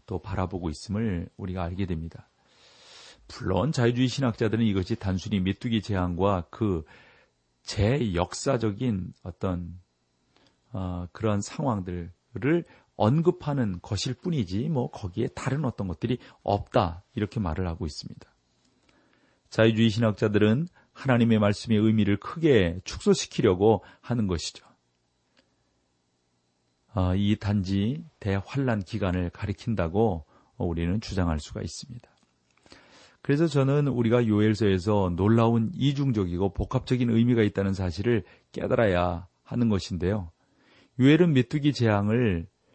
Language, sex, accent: Korean, male, native